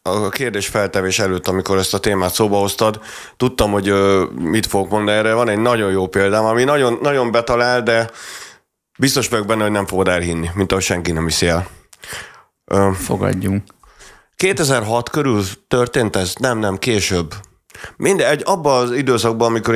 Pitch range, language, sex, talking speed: 95-125 Hz, Hungarian, male, 160 wpm